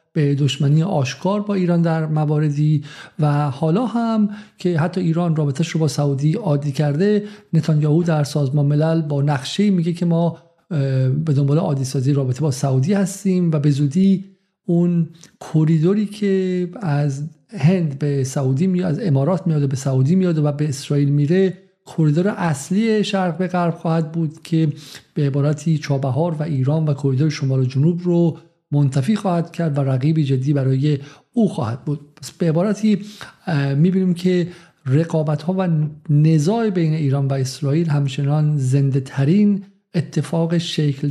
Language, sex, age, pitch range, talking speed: Persian, male, 50-69, 140-175 Hz, 145 wpm